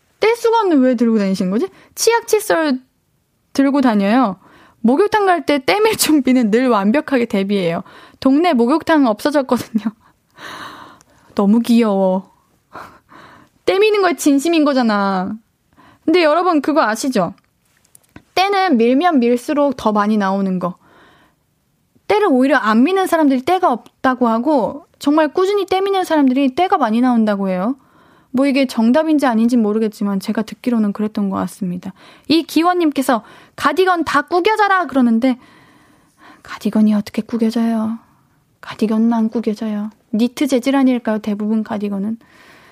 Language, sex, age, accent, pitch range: Korean, female, 20-39, native, 220-310 Hz